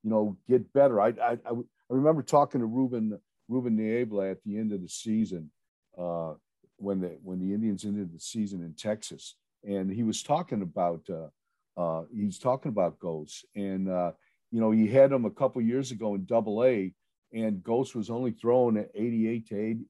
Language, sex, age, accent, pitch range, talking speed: English, male, 50-69, American, 105-125 Hz, 200 wpm